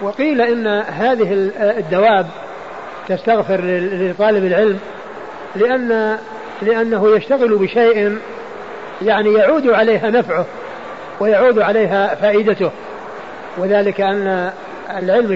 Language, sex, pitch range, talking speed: Arabic, male, 190-215 Hz, 80 wpm